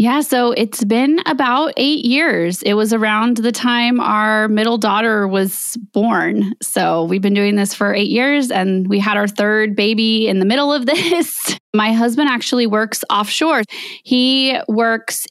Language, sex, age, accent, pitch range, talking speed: English, female, 20-39, American, 210-265 Hz, 170 wpm